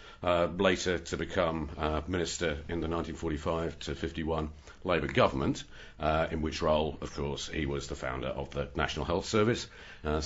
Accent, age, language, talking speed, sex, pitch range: British, 50-69, English, 170 wpm, male, 75-95 Hz